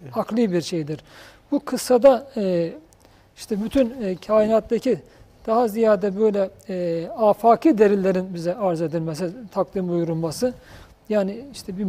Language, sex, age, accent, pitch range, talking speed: Turkish, male, 40-59, native, 190-240 Hz, 105 wpm